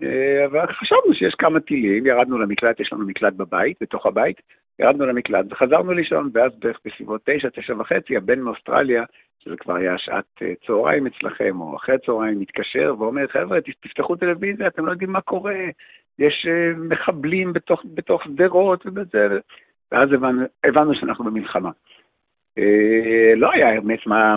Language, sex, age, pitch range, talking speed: Hebrew, male, 60-79, 110-170 Hz, 150 wpm